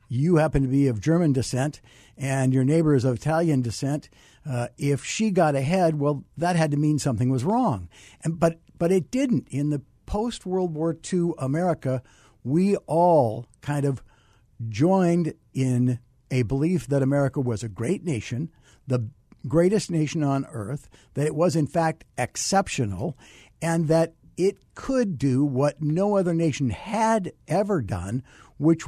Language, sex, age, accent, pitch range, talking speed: English, male, 60-79, American, 125-165 Hz, 160 wpm